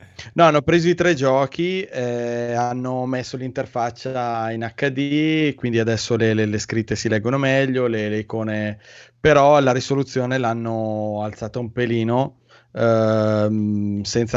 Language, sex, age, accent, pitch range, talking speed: Italian, male, 20-39, native, 110-130 Hz, 140 wpm